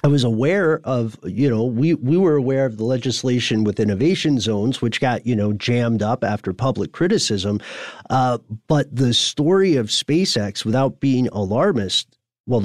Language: English